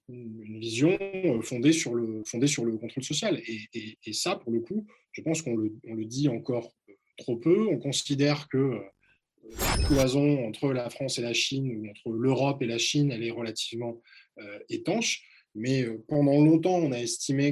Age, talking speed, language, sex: 20-39, 195 wpm, French, male